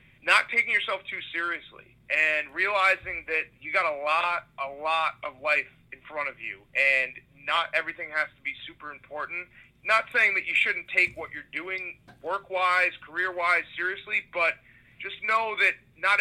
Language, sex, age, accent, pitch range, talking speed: English, male, 30-49, American, 150-185 Hz, 165 wpm